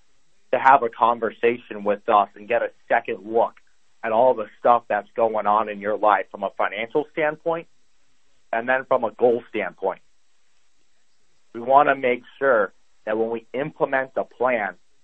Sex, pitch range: male, 110-125 Hz